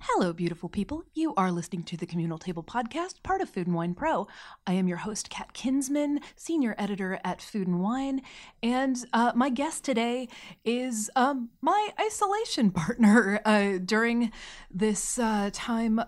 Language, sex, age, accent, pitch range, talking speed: English, female, 30-49, American, 185-230 Hz, 155 wpm